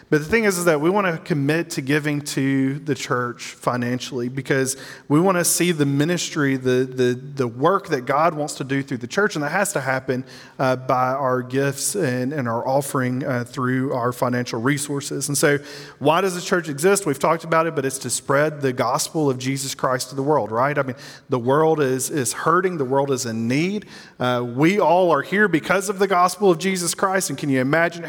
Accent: American